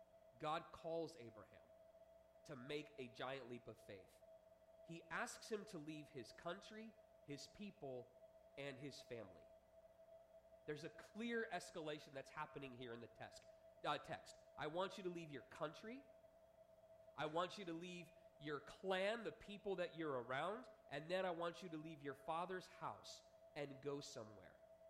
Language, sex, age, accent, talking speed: English, male, 30-49, American, 160 wpm